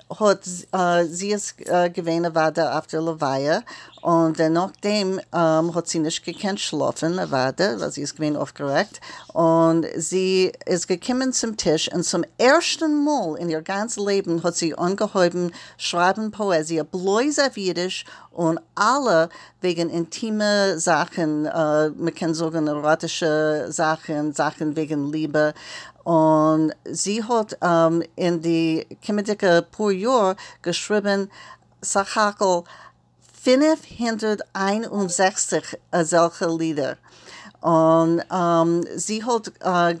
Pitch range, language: 160-195 Hz, English